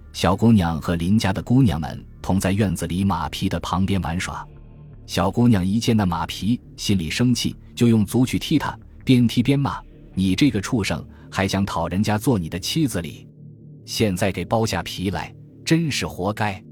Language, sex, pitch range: Chinese, male, 85-115 Hz